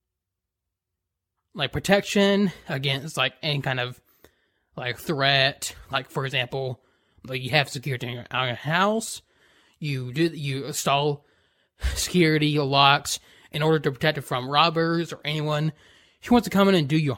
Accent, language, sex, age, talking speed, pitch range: American, English, male, 20-39, 155 wpm, 130-170 Hz